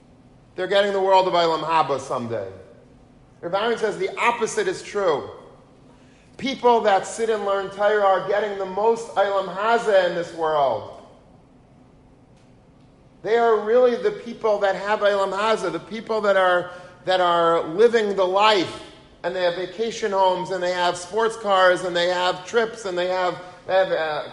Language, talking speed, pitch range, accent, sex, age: English, 165 wpm, 175-215 Hz, American, male, 40-59